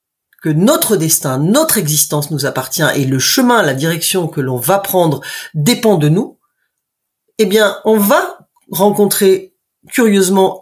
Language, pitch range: French, 175-245 Hz